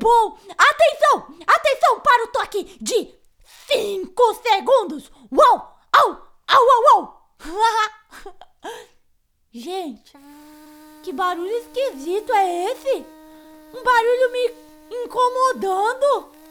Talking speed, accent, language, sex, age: 85 wpm, Brazilian, Portuguese, female, 20-39